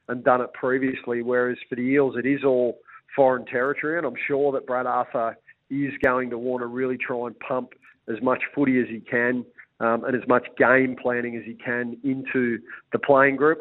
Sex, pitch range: male, 120-135 Hz